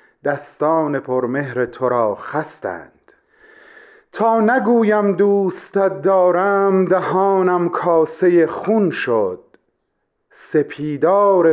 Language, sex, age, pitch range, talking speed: Persian, male, 40-59, 150-215 Hz, 75 wpm